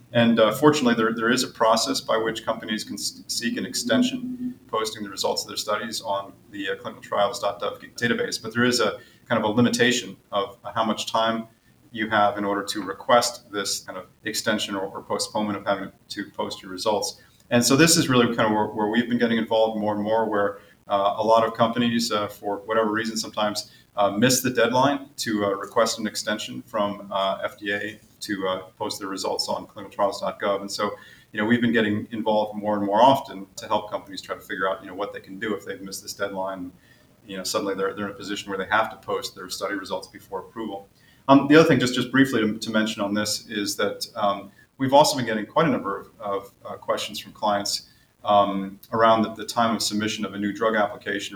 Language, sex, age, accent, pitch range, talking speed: English, male, 30-49, American, 100-115 Hz, 225 wpm